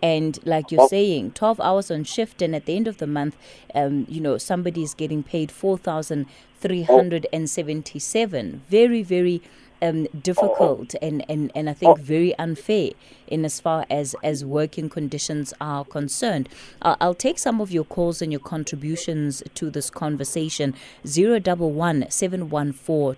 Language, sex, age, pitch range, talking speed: English, female, 20-39, 150-195 Hz, 175 wpm